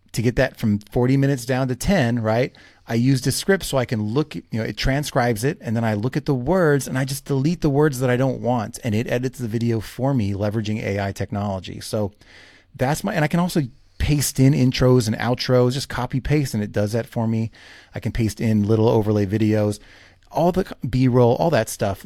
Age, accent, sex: 30-49, American, male